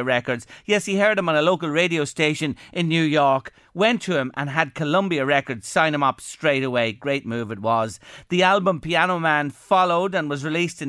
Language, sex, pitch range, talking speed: English, male, 135-180 Hz, 210 wpm